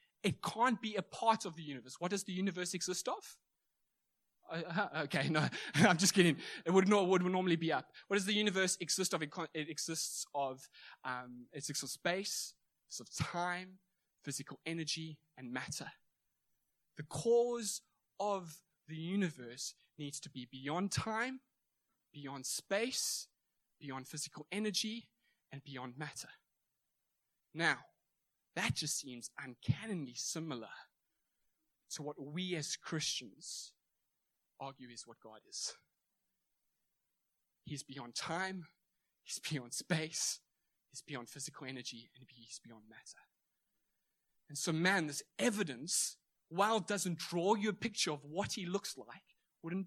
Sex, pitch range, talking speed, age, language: male, 145-195 Hz, 135 wpm, 20-39, English